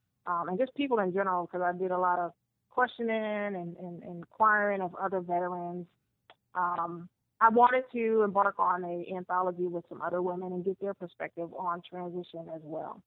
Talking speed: 185 wpm